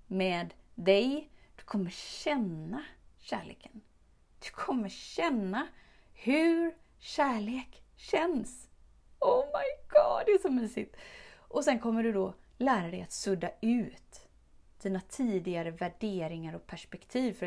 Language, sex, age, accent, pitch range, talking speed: Swedish, female, 30-49, native, 190-255 Hz, 120 wpm